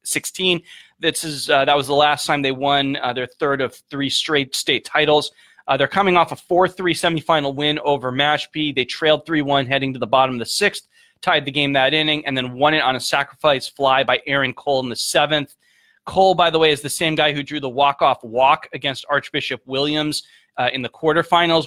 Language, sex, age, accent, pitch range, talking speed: English, male, 20-39, American, 135-165 Hz, 215 wpm